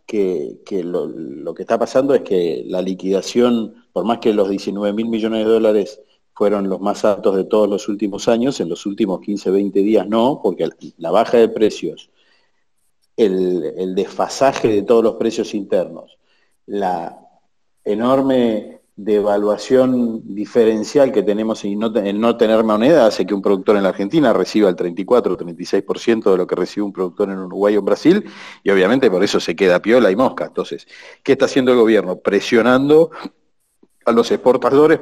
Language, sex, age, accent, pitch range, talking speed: Spanish, male, 40-59, Argentinian, 105-145 Hz, 175 wpm